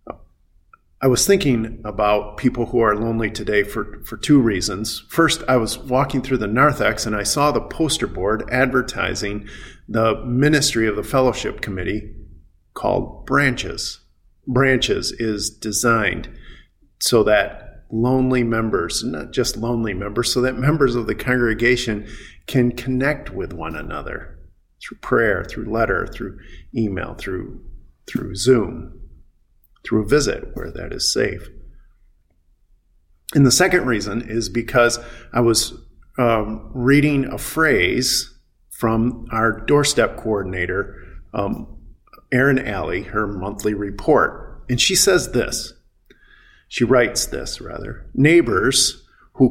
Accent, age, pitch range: American, 50-69, 105-130 Hz